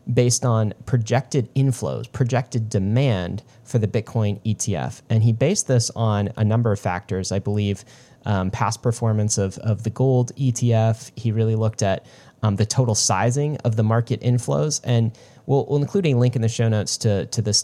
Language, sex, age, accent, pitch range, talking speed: English, male, 30-49, American, 110-125 Hz, 185 wpm